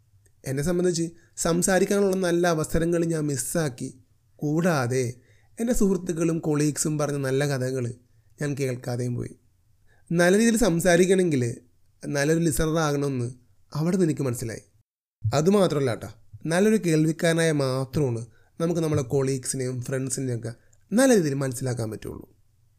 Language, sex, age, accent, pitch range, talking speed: Malayalam, male, 30-49, native, 120-170 Hz, 100 wpm